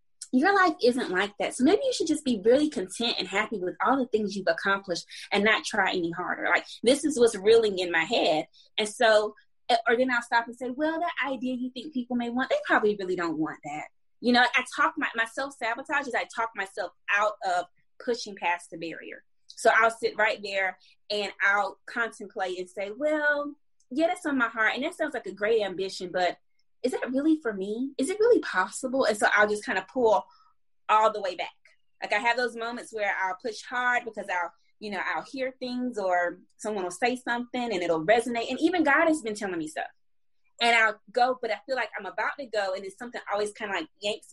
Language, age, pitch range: English, 20-39, 190-265 Hz